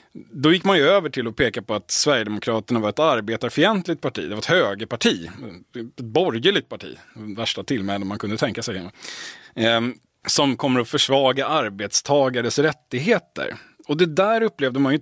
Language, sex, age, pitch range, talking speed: Swedish, male, 30-49, 115-160 Hz, 170 wpm